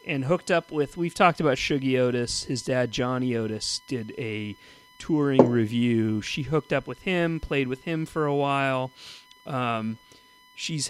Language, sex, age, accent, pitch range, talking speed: English, male, 40-59, American, 120-170 Hz, 165 wpm